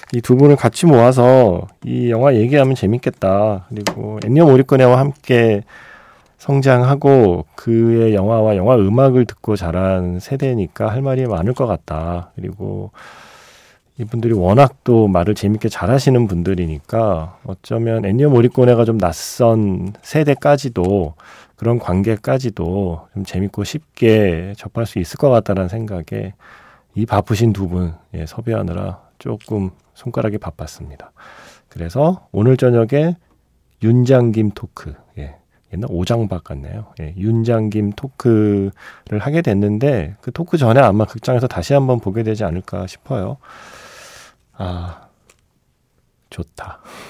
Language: Korean